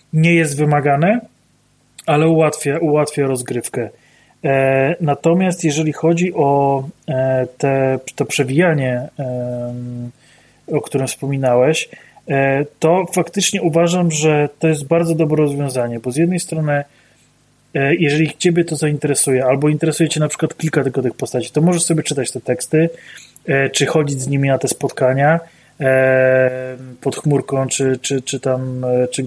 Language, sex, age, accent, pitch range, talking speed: Polish, male, 30-49, native, 135-160 Hz, 125 wpm